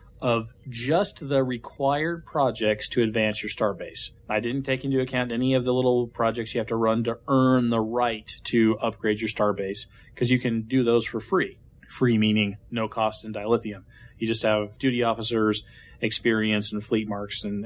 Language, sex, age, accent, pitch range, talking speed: English, male, 30-49, American, 105-130 Hz, 185 wpm